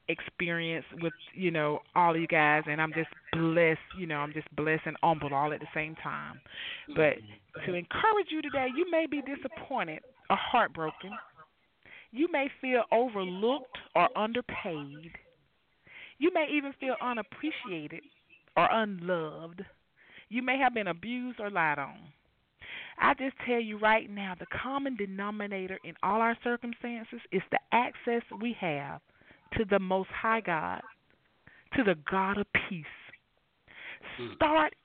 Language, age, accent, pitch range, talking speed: English, 30-49, American, 175-270 Hz, 145 wpm